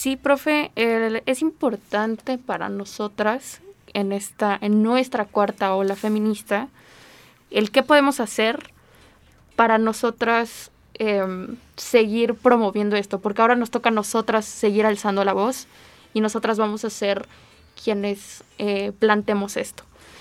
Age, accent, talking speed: 10-29, Mexican, 130 wpm